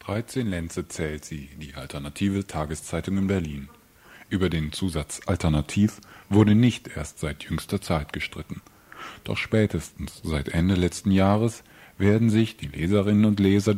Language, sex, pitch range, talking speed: German, male, 80-105 Hz, 140 wpm